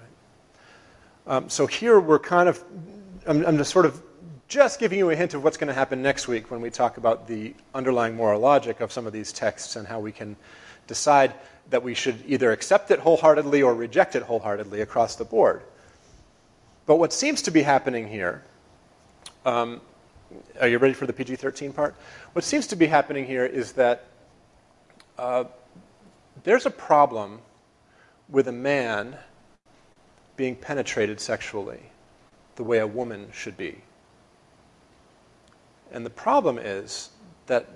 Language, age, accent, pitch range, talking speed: English, 40-59, American, 115-150 Hz, 155 wpm